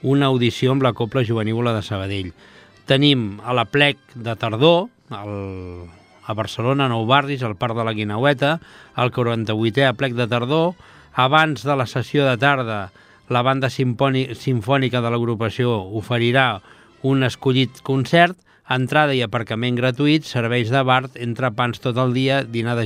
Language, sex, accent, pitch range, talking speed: Italian, male, Spanish, 115-145 Hz, 150 wpm